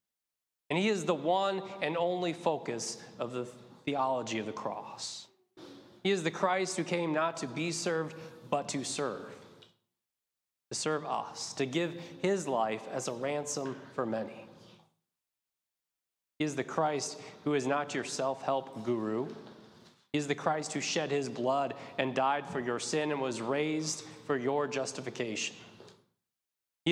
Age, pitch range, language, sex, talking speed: 20-39, 135-170 Hz, English, male, 155 wpm